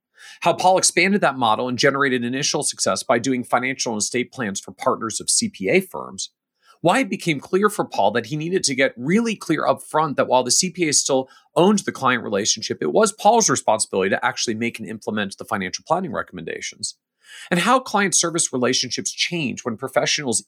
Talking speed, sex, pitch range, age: 190 wpm, male, 120-180 Hz, 40-59